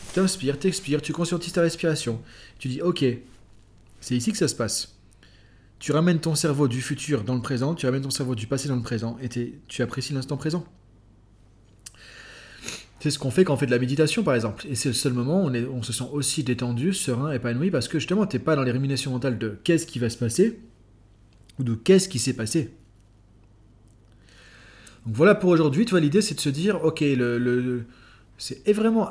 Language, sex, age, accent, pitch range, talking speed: French, male, 30-49, French, 115-150 Hz, 210 wpm